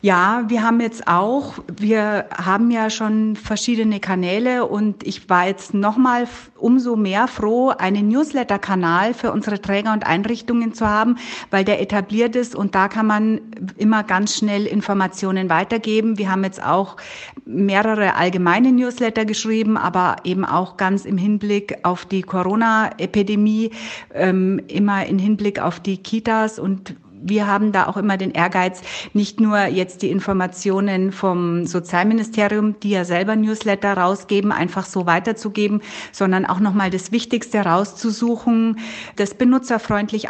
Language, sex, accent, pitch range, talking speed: German, female, German, 185-220 Hz, 140 wpm